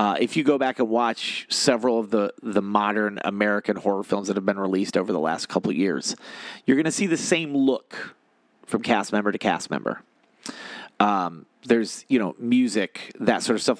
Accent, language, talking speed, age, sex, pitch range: American, English, 205 wpm, 40-59, male, 100-130 Hz